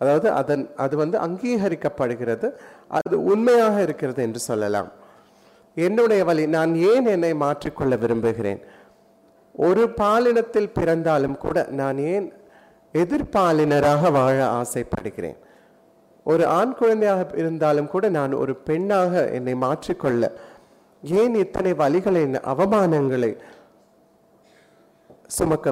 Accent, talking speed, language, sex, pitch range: native, 95 wpm, Tamil, male, 130-180 Hz